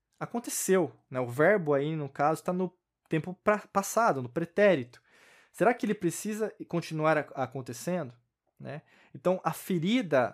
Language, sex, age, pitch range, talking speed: Portuguese, male, 20-39, 135-185 Hz, 145 wpm